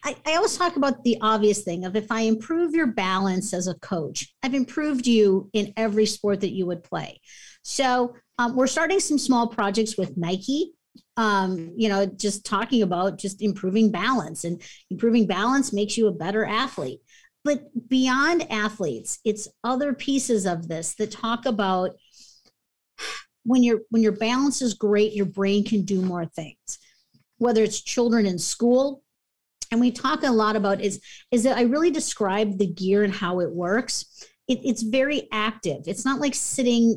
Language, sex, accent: English, female, American